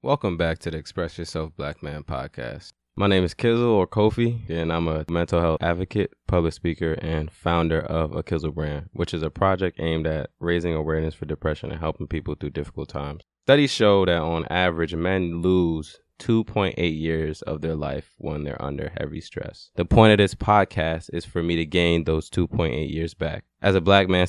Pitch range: 80-90 Hz